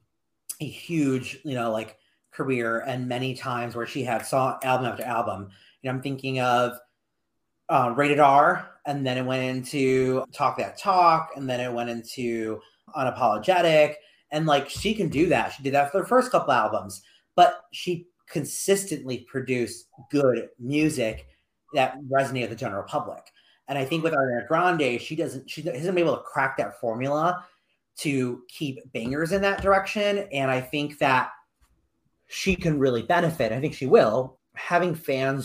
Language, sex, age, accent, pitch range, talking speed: English, male, 30-49, American, 125-155 Hz, 170 wpm